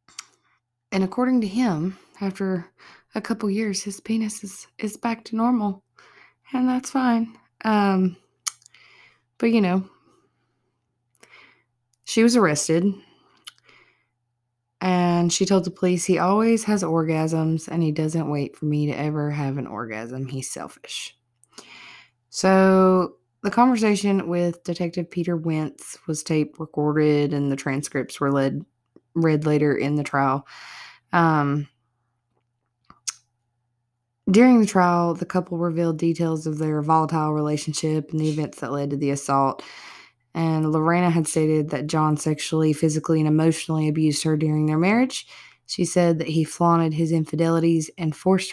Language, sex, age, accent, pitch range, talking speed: English, female, 20-39, American, 145-185 Hz, 135 wpm